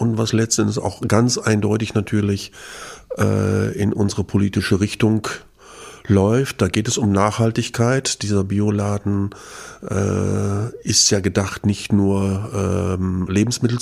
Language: German